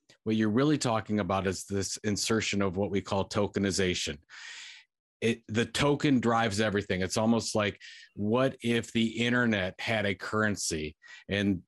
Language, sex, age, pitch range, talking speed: English, male, 50-69, 100-115 Hz, 150 wpm